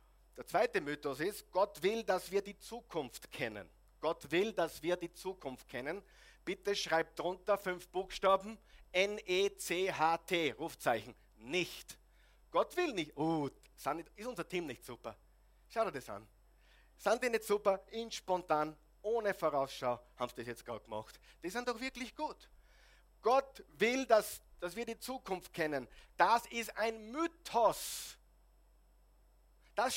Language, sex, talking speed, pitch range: German, male, 140 wpm, 160-245 Hz